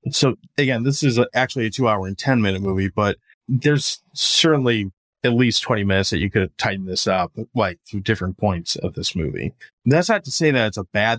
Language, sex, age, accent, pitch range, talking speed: English, male, 20-39, American, 100-125 Hz, 205 wpm